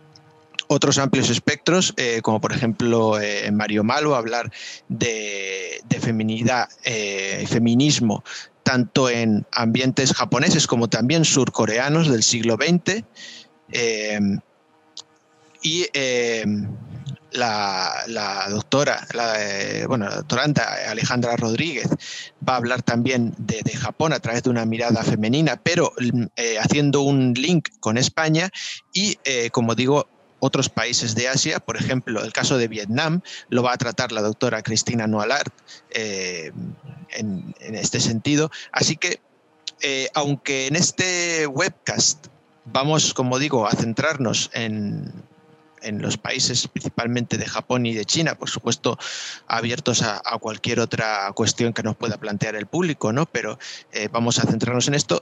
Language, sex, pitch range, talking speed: Spanish, male, 115-145 Hz, 140 wpm